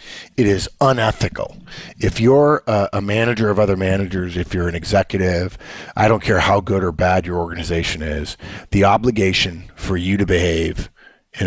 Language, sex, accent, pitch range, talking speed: English, male, American, 85-105 Hz, 165 wpm